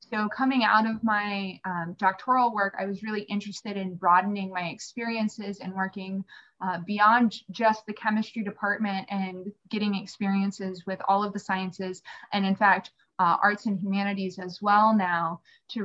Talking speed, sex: 165 wpm, female